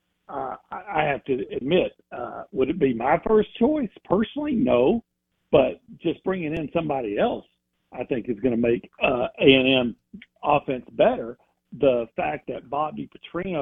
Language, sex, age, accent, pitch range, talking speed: English, male, 60-79, American, 135-185 Hz, 155 wpm